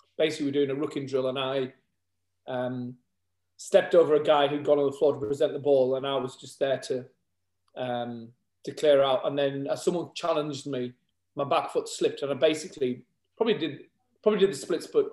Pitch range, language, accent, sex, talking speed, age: 125-155 Hz, English, British, male, 210 wpm, 30-49